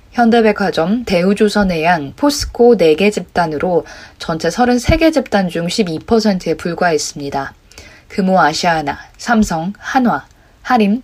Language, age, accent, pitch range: Korean, 20-39, native, 170-225 Hz